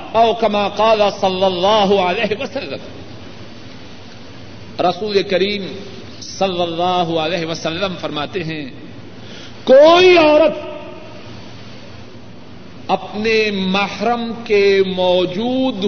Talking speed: 70 wpm